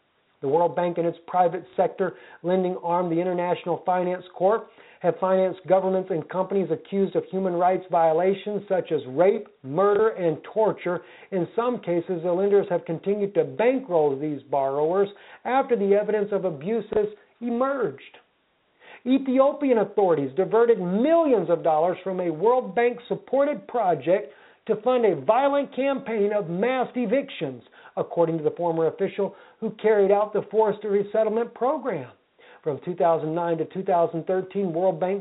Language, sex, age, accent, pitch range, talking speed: English, male, 50-69, American, 180-220 Hz, 140 wpm